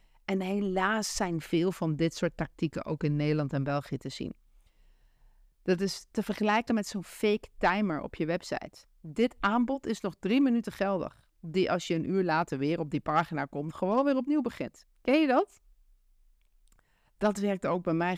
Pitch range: 165-220 Hz